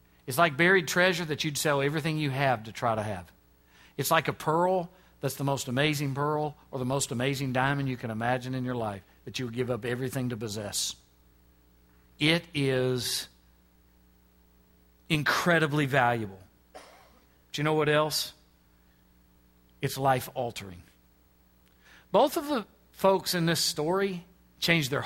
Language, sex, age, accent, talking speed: English, male, 50-69, American, 150 wpm